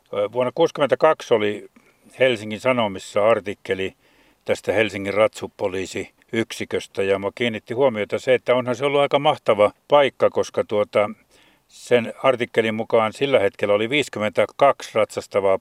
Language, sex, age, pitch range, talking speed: Finnish, male, 60-79, 105-145 Hz, 115 wpm